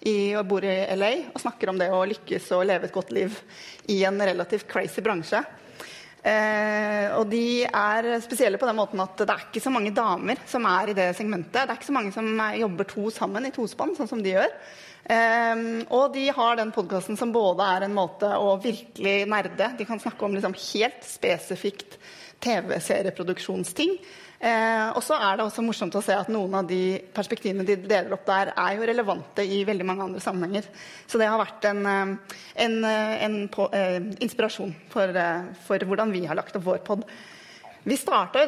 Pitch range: 195-230 Hz